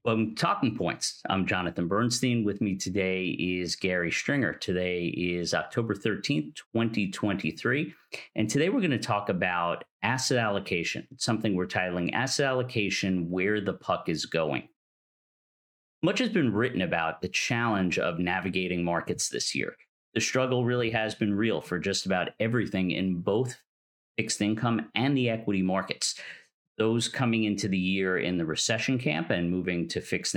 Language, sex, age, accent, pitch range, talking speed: English, male, 50-69, American, 90-115 Hz, 155 wpm